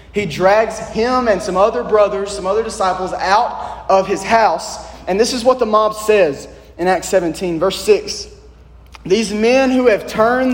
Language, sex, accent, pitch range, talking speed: English, male, American, 145-215 Hz, 175 wpm